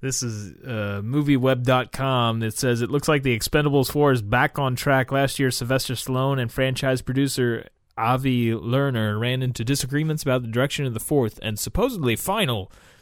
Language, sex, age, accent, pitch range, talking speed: English, male, 20-39, American, 110-140 Hz, 170 wpm